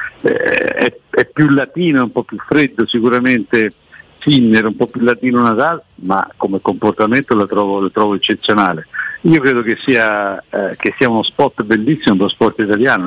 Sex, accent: male, native